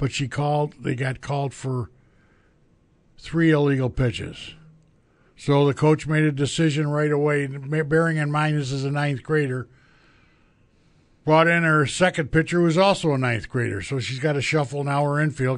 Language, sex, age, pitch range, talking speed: English, male, 60-79, 125-155 Hz, 175 wpm